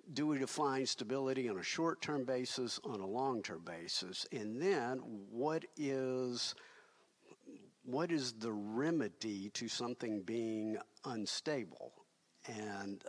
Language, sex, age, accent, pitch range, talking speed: English, male, 50-69, American, 105-130 Hz, 125 wpm